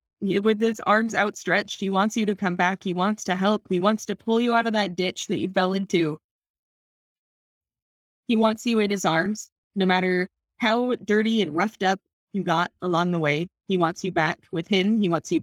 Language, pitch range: English, 170-220 Hz